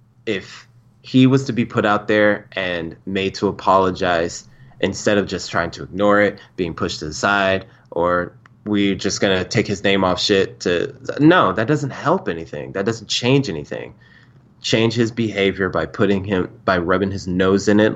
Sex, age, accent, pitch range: male, 20-39, American, 95-120 Hz